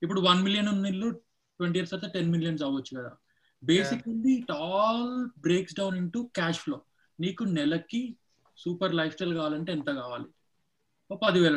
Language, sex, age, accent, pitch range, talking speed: Telugu, male, 20-39, native, 150-185 Hz, 150 wpm